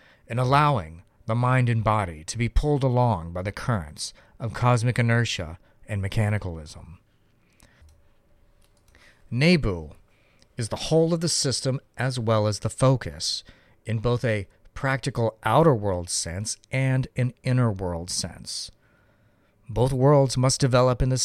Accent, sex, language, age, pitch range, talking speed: American, male, English, 40-59, 100-125 Hz, 135 wpm